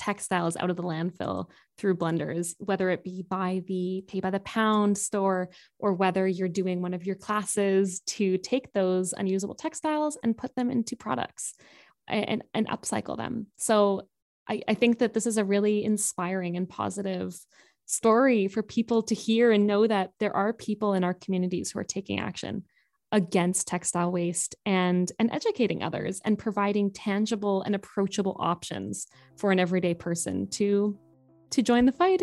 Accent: American